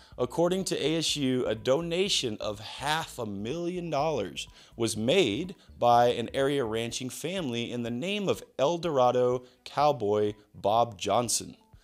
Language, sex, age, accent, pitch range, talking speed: English, male, 30-49, American, 105-150 Hz, 130 wpm